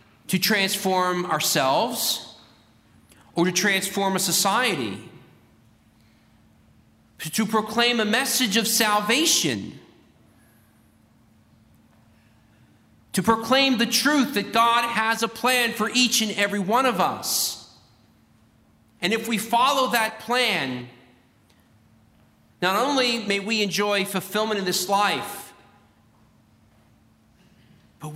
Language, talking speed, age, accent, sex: English, 100 wpm, 40-59, American, male